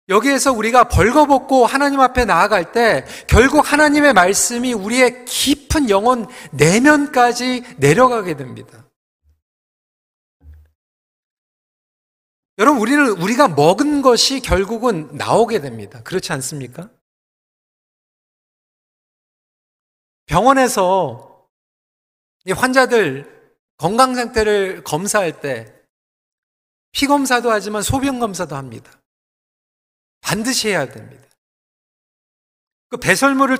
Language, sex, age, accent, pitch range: Korean, male, 40-59, native, 190-265 Hz